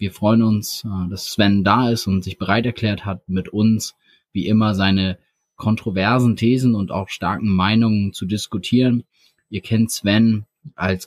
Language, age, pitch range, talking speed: German, 20-39, 95-115 Hz, 155 wpm